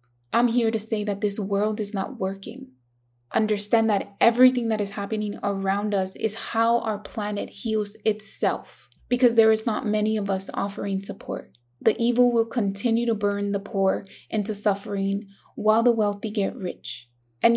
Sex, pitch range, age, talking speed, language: female, 200-225 Hz, 20-39, 165 wpm, English